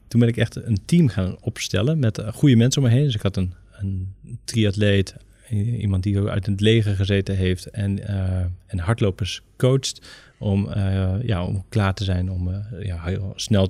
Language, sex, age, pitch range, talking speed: Dutch, male, 30-49, 100-125 Hz, 195 wpm